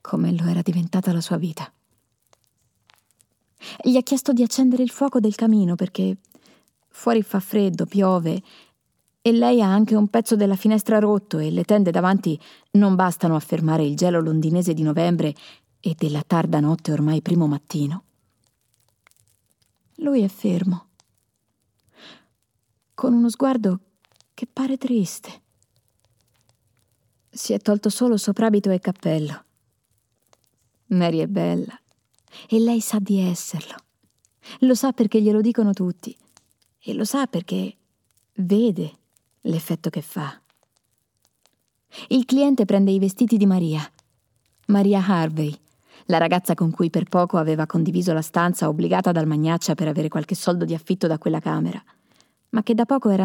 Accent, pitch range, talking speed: native, 150-210 Hz, 140 wpm